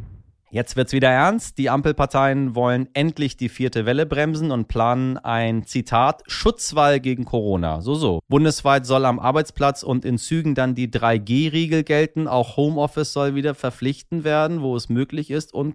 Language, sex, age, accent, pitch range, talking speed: German, male, 30-49, German, 110-140 Hz, 165 wpm